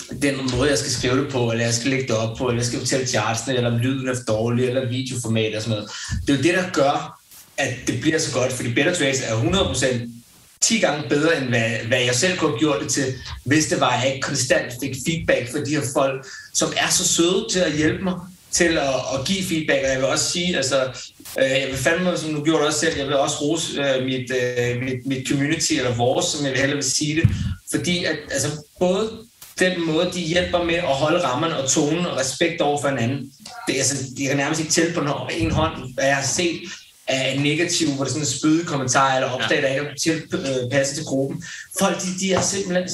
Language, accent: Danish, native